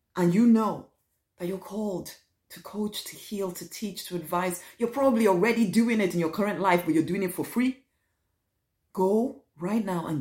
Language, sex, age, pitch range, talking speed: English, female, 30-49, 150-215 Hz, 195 wpm